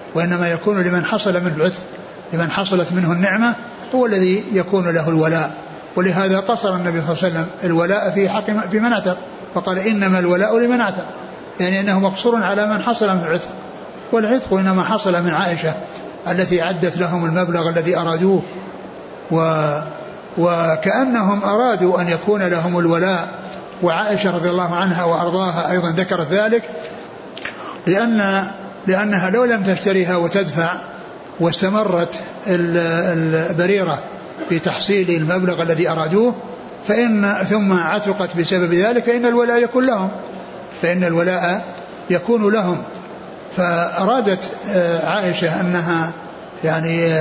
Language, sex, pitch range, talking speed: Arabic, male, 170-205 Hz, 115 wpm